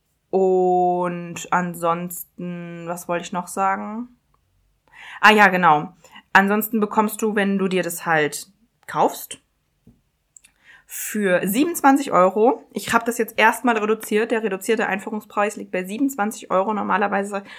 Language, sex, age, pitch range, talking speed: German, female, 20-39, 185-230 Hz, 125 wpm